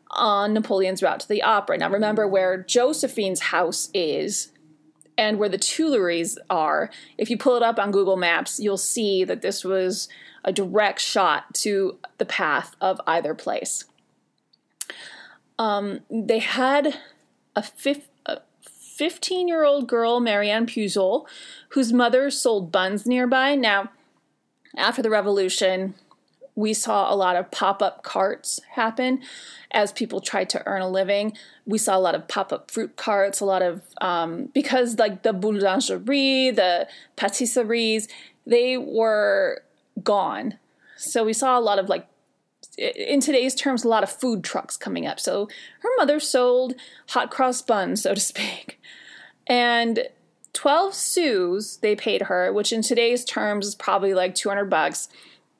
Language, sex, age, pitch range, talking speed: English, female, 30-49, 200-265 Hz, 145 wpm